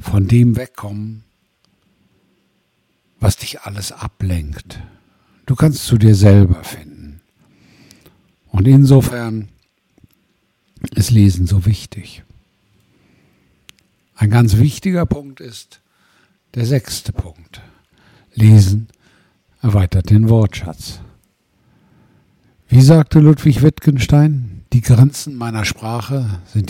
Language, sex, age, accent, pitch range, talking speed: German, male, 60-79, German, 100-130 Hz, 90 wpm